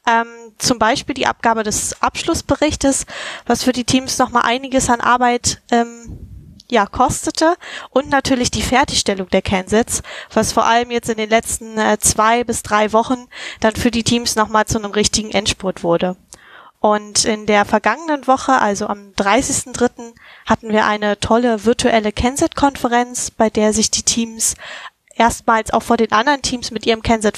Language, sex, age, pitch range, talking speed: German, female, 10-29, 215-245 Hz, 160 wpm